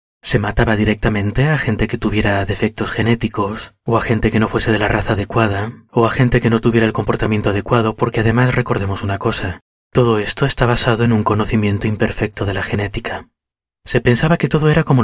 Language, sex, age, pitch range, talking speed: Spanish, male, 30-49, 100-125 Hz, 200 wpm